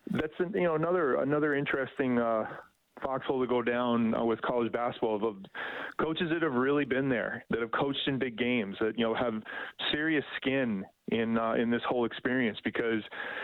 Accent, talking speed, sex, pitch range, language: American, 185 wpm, male, 115-140 Hz, English